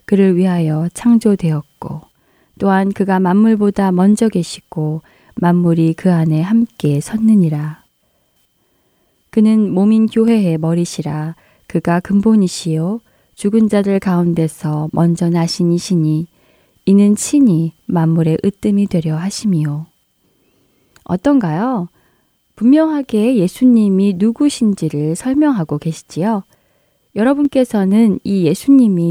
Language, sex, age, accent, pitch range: Korean, female, 20-39, native, 165-225 Hz